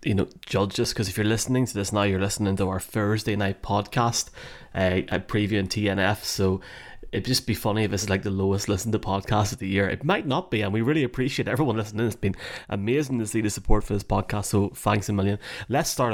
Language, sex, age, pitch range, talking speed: English, male, 30-49, 95-115 Hz, 240 wpm